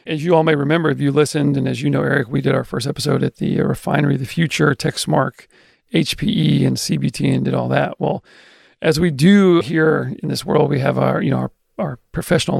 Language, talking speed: English, 230 wpm